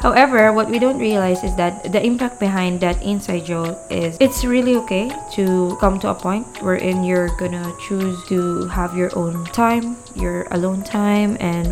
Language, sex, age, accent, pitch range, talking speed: English, female, 20-39, Filipino, 180-215 Hz, 180 wpm